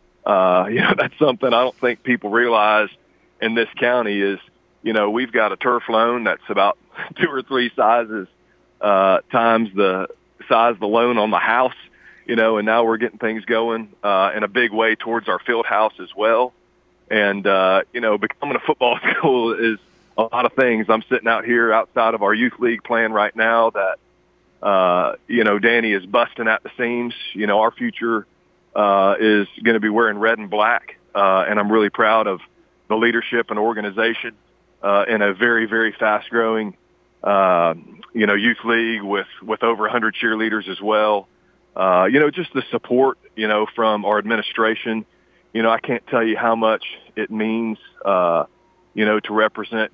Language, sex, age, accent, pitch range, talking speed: English, male, 40-59, American, 105-115 Hz, 195 wpm